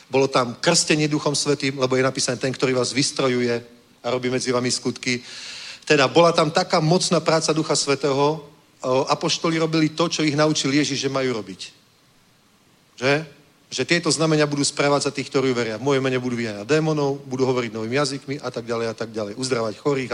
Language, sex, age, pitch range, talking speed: Czech, male, 40-59, 135-165 Hz, 190 wpm